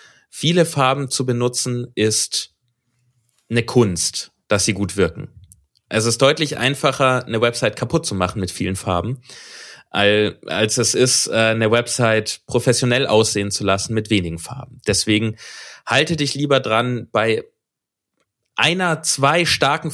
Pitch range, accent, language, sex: 110-140 Hz, German, German, male